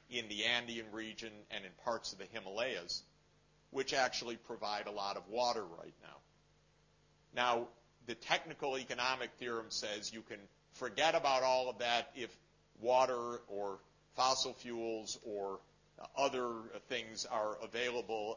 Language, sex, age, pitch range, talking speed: English, male, 50-69, 105-130 Hz, 145 wpm